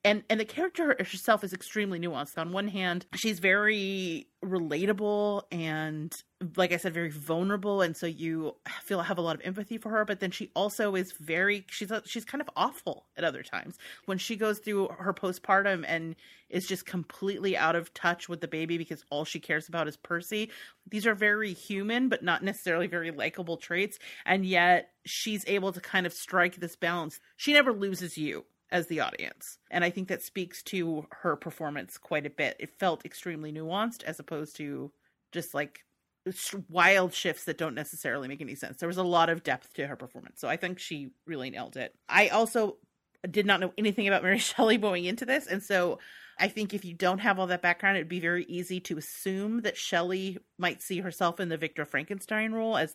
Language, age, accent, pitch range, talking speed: English, 30-49, American, 165-205 Hz, 205 wpm